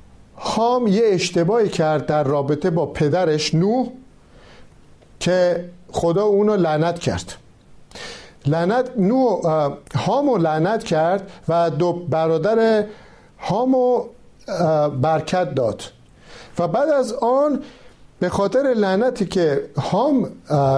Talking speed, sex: 95 wpm, male